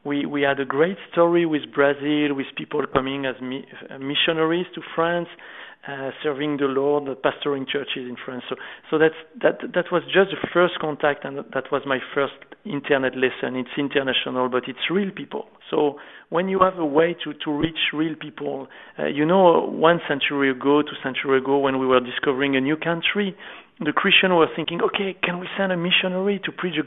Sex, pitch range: male, 135-165 Hz